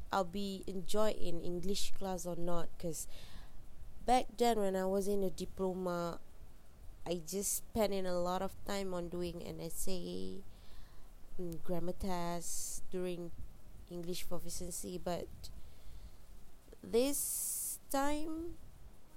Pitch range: 175-225 Hz